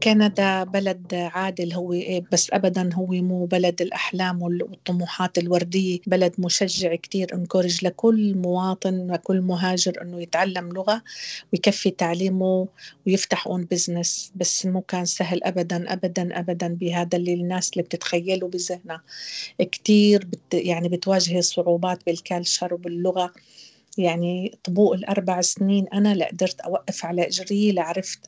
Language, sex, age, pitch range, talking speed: Arabic, female, 40-59, 175-190 Hz, 120 wpm